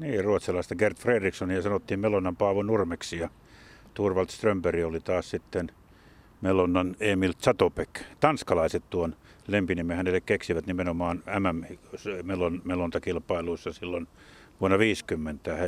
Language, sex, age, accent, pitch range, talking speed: Finnish, male, 50-69, native, 90-110 Hz, 110 wpm